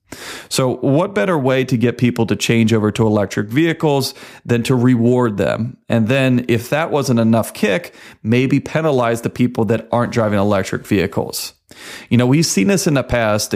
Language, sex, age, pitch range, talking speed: English, male, 40-59, 110-135 Hz, 180 wpm